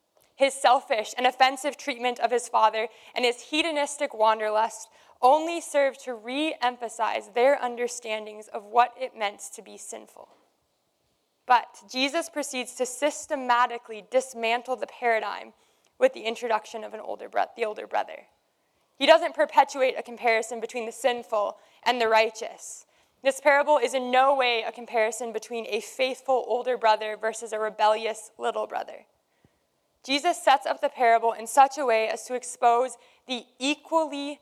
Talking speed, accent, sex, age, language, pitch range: 145 wpm, American, female, 20-39, English, 225-270 Hz